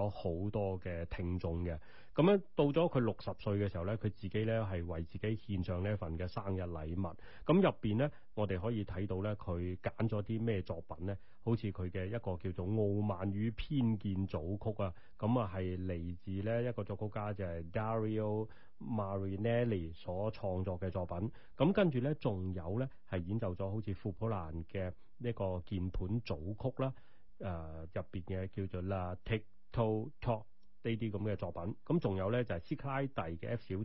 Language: Chinese